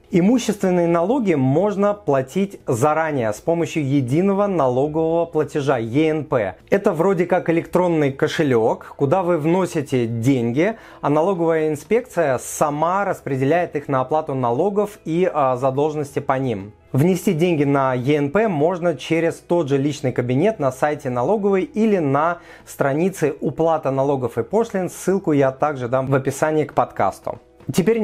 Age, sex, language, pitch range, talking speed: 30-49, male, Russian, 140-175 Hz, 135 wpm